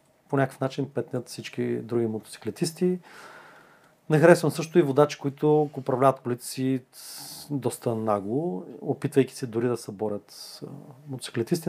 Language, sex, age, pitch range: Bulgarian, male, 30-49, 130-170 Hz